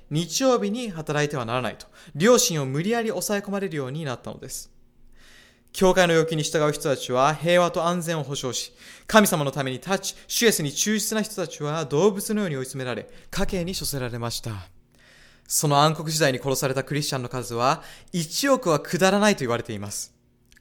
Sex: male